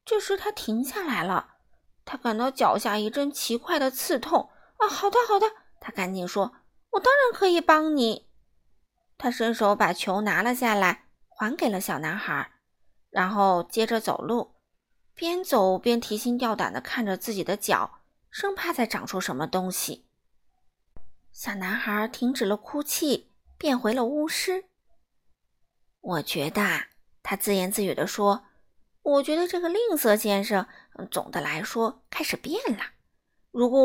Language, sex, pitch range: Chinese, female, 205-280 Hz